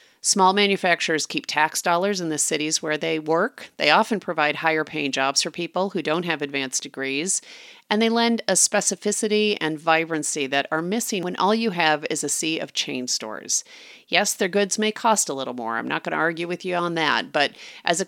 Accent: American